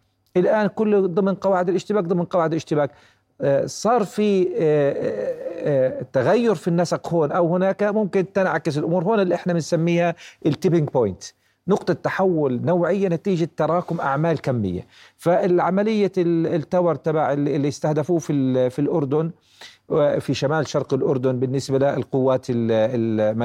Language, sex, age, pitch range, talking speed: Arabic, male, 40-59, 130-175 Hz, 120 wpm